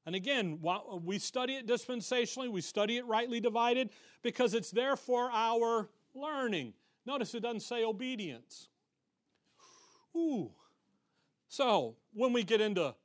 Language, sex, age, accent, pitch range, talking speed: English, male, 40-59, American, 160-235 Hz, 130 wpm